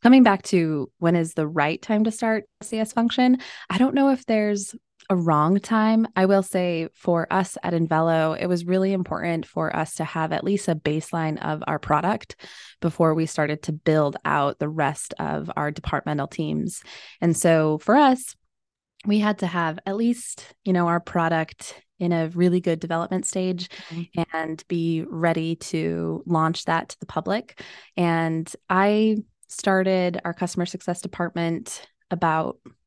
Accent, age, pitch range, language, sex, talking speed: American, 20-39, 160-190 Hz, English, female, 165 wpm